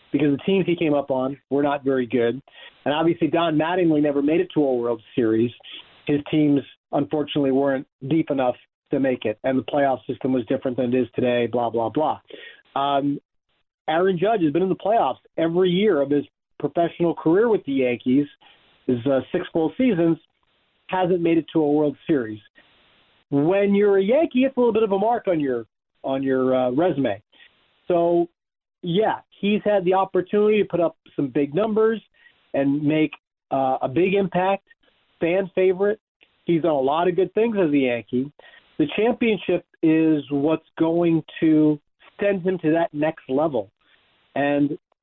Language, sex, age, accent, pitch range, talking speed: English, male, 40-59, American, 140-190 Hz, 175 wpm